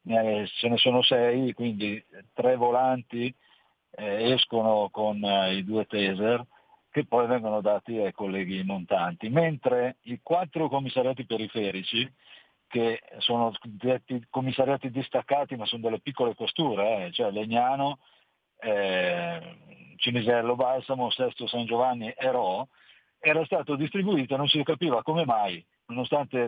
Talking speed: 125 wpm